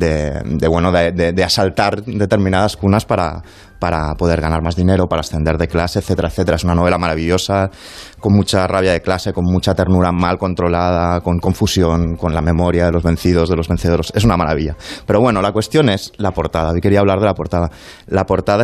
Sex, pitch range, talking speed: male, 85-105 Hz, 205 wpm